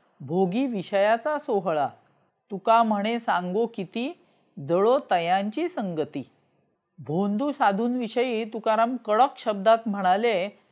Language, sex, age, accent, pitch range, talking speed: Marathi, female, 40-59, native, 195-245 Hz, 90 wpm